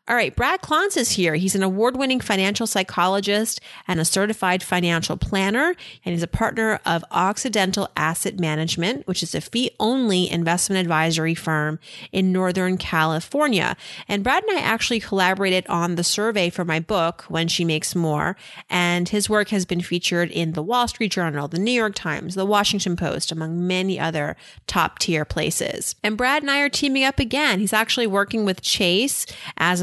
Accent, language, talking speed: American, English, 175 wpm